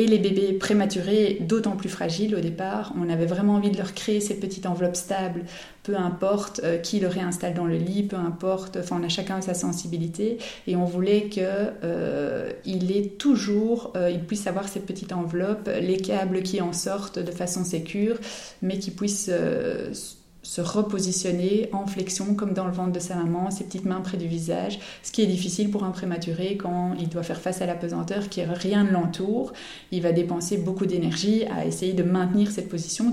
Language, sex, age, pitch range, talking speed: French, female, 30-49, 175-200 Hz, 200 wpm